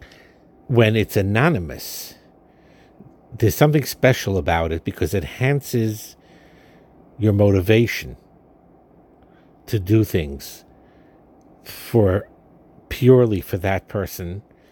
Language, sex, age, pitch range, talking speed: English, male, 50-69, 85-105 Hz, 85 wpm